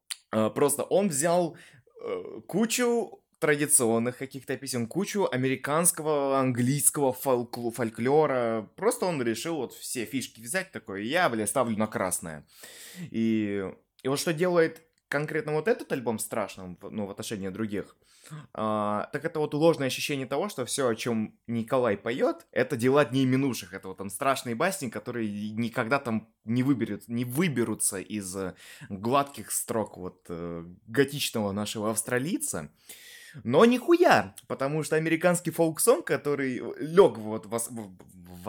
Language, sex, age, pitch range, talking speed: Russian, male, 20-39, 110-150 Hz, 140 wpm